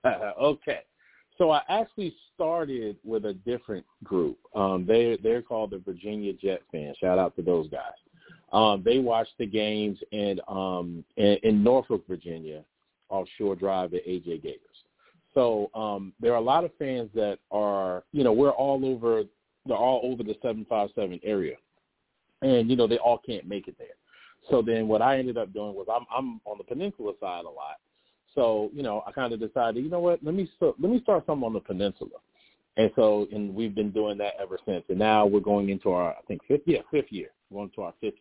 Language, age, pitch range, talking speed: English, 40-59, 100-135 Hz, 205 wpm